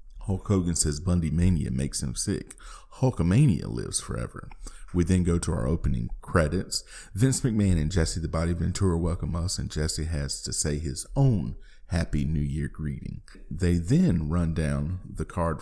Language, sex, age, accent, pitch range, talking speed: English, male, 40-59, American, 80-100 Hz, 165 wpm